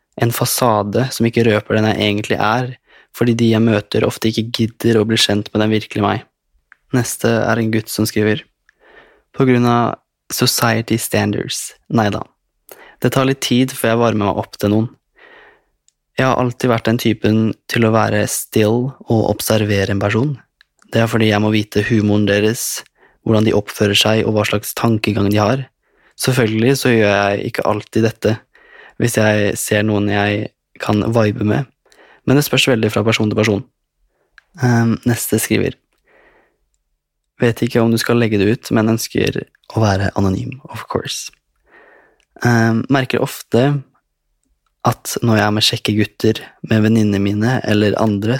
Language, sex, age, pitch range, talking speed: English, male, 20-39, 105-120 Hz, 170 wpm